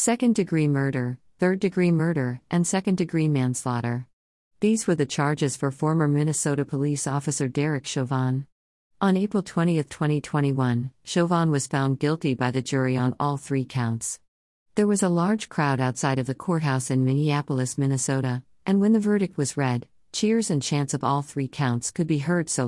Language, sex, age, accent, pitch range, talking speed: English, female, 50-69, American, 130-160 Hz, 165 wpm